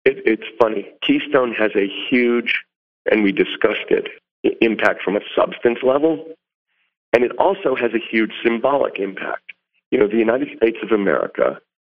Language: English